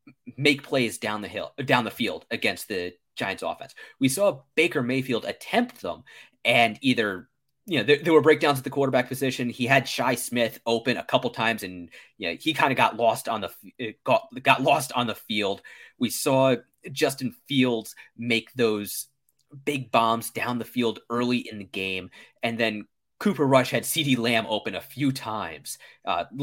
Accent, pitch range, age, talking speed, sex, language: American, 115-140 Hz, 20-39, 185 wpm, male, English